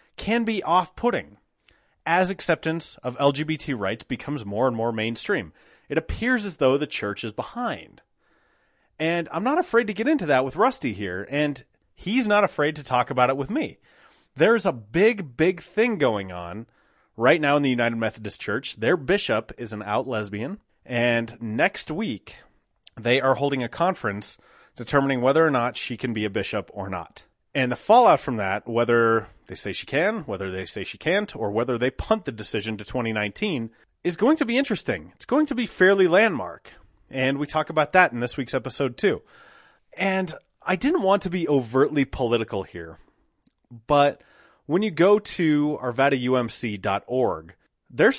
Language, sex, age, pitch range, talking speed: English, male, 30-49, 120-185 Hz, 175 wpm